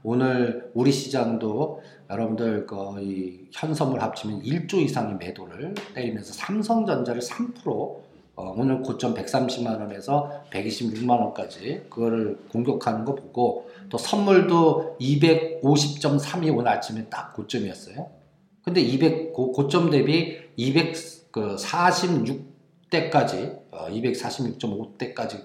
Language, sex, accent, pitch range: Korean, male, native, 120-170 Hz